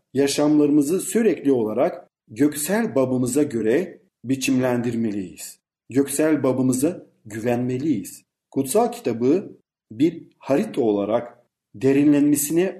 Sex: male